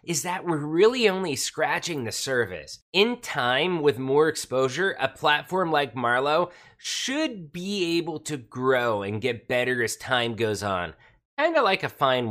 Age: 30-49